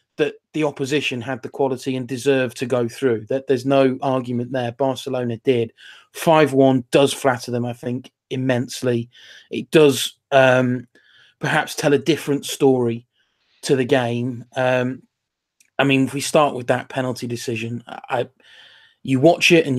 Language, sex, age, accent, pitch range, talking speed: English, male, 30-49, British, 125-150 Hz, 160 wpm